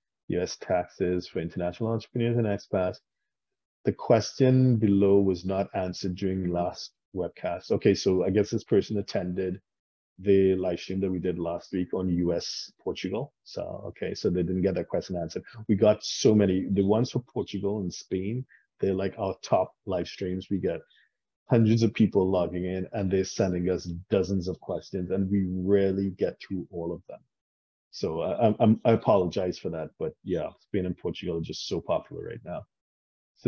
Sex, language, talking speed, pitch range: male, English, 175 wpm, 90-105 Hz